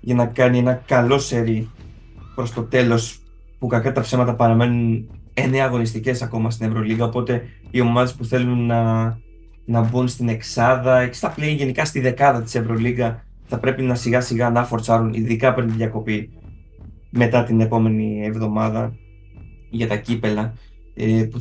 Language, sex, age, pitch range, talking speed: Greek, male, 20-39, 110-125 Hz, 155 wpm